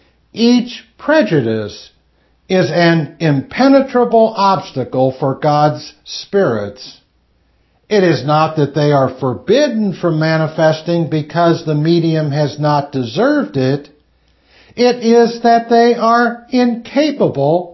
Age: 60-79